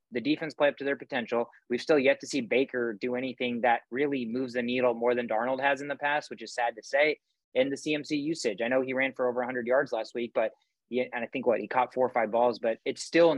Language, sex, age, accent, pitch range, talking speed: English, male, 20-39, American, 120-150 Hz, 275 wpm